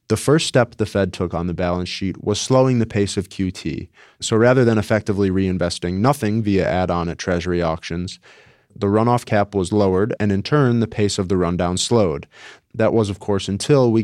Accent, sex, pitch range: American, male, 90-115 Hz